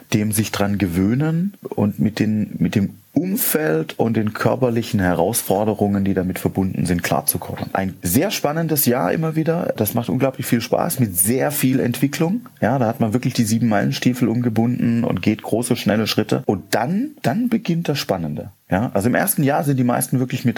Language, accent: German, German